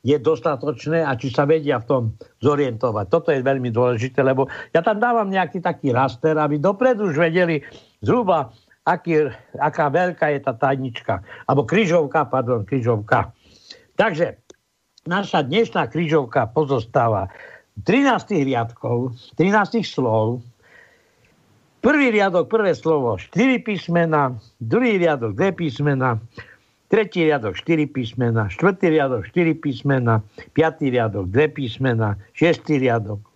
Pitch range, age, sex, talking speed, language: 125-170 Hz, 60-79, male, 120 wpm, Slovak